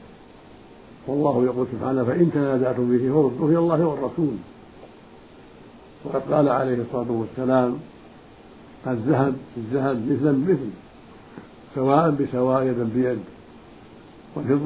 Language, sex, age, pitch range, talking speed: Arabic, male, 60-79, 120-135 Hz, 95 wpm